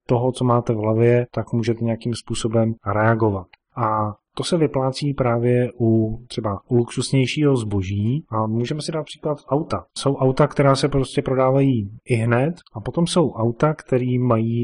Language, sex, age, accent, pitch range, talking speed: Czech, male, 30-49, native, 115-135 Hz, 165 wpm